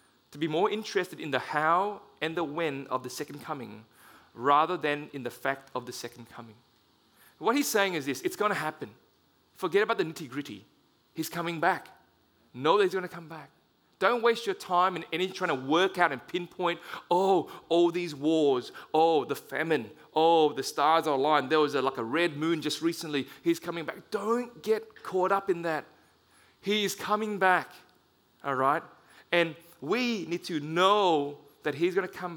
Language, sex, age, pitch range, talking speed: English, male, 30-49, 145-195 Hz, 195 wpm